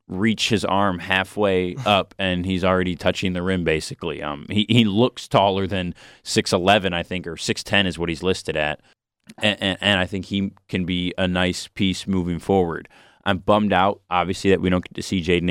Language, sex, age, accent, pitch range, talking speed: English, male, 20-39, American, 90-100 Hz, 200 wpm